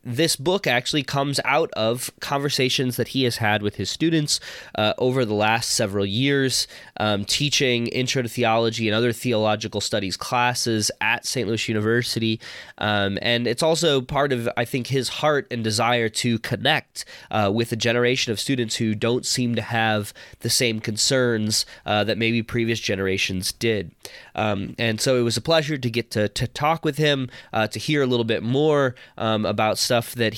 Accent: American